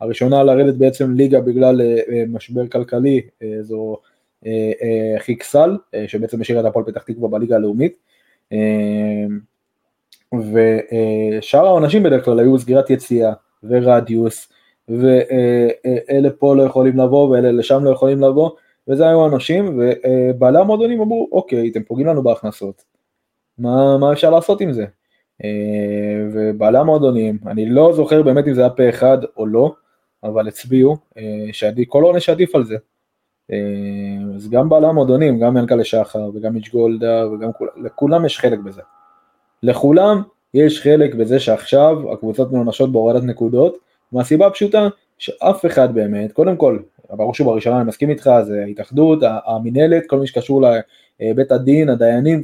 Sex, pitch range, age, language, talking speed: male, 110-140 Hz, 20-39, Hebrew, 145 wpm